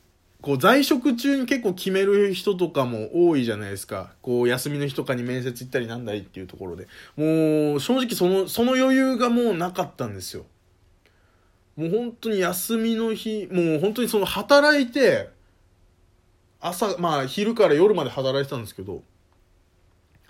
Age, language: 20-39, Japanese